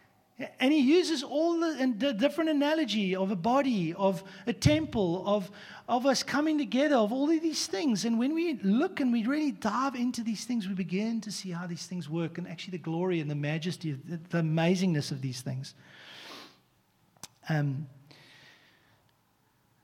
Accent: Australian